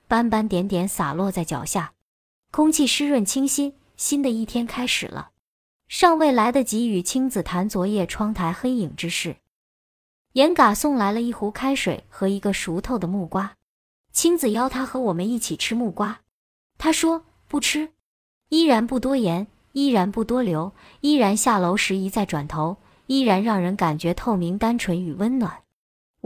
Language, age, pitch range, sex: Chinese, 20-39, 185-250 Hz, male